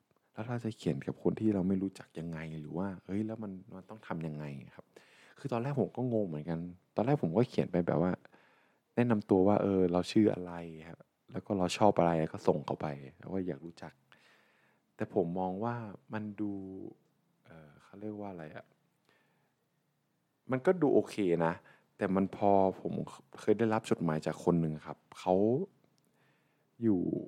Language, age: Thai, 20-39